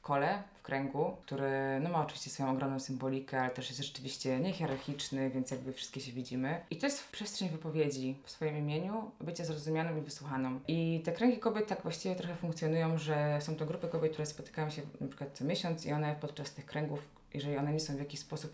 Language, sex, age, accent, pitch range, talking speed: Polish, female, 20-39, native, 140-165 Hz, 210 wpm